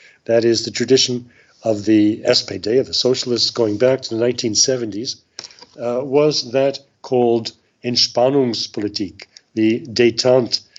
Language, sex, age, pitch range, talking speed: English, male, 60-79, 105-125 Hz, 120 wpm